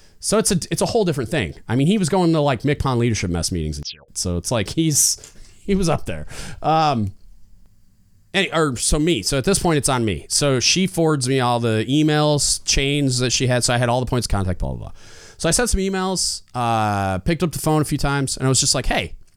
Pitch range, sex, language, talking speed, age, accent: 100-155 Hz, male, English, 250 wpm, 30-49, American